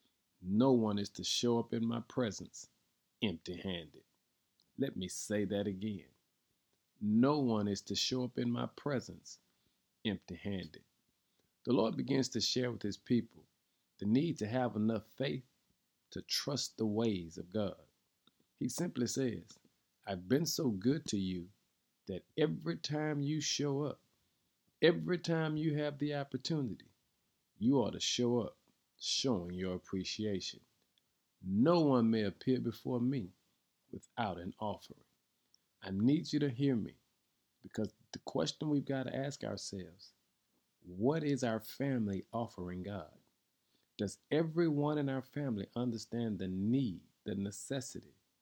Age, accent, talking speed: 50-69, American, 140 wpm